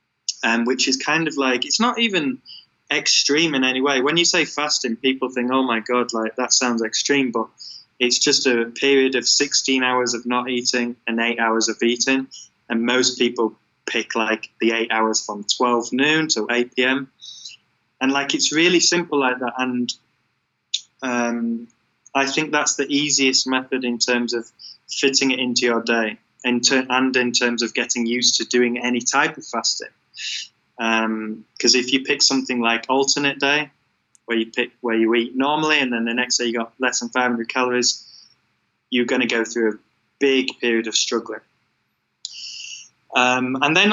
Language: English